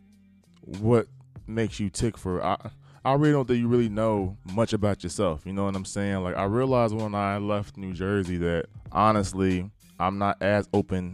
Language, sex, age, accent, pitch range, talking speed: English, male, 20-39, American, 90-105 Hz, 190 wpm